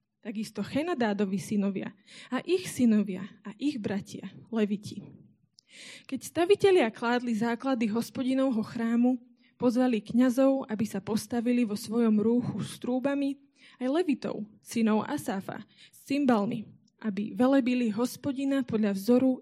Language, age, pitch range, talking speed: Slovak, 20-39, 215-265 Hz, 115 wpm